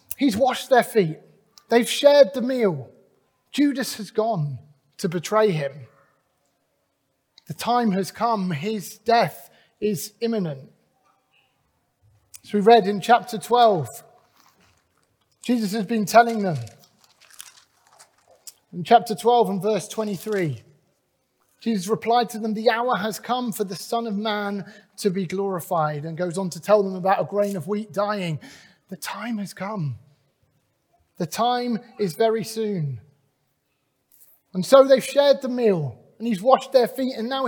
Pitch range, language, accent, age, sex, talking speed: 185-245 Hz, English, British, 30-49, male, 140 wpm